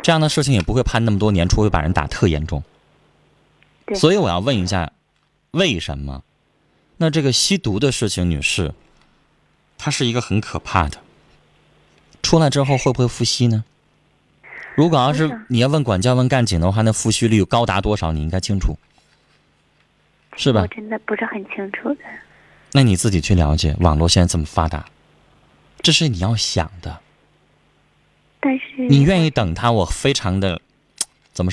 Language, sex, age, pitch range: Chinese, male, 20-39, 85-130 Hz